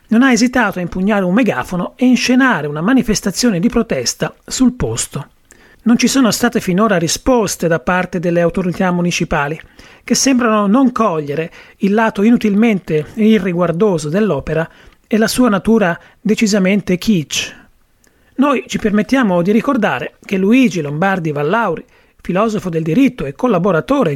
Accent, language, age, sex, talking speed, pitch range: native, Italian, 30-49, male, 140 wpm, 180-240 Hz